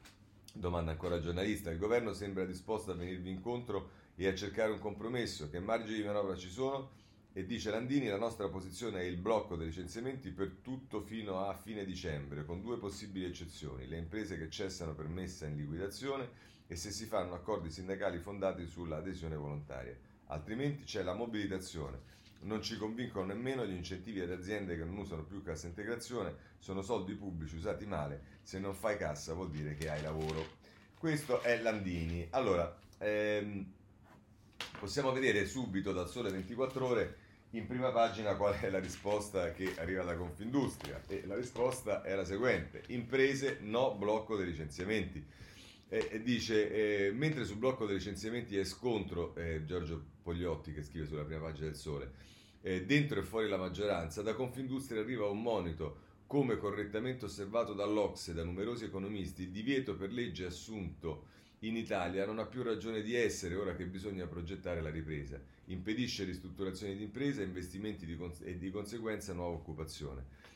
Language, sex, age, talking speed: Italian, male, 40-59, 165 wpm